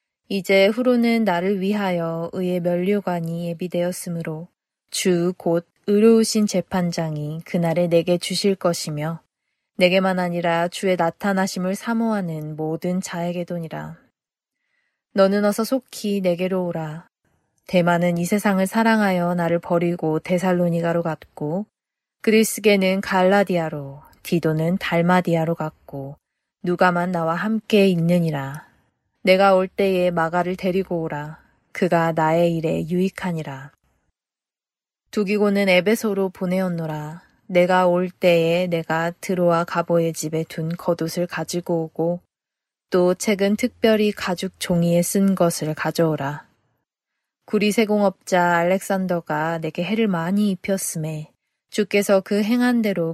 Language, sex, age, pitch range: Korean, female, 20-39, 165-195 Hz